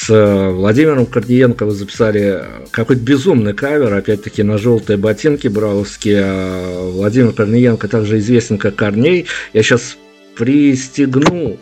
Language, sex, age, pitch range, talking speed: Russian, male, 50-69, 105-120 Hz, 115 wpm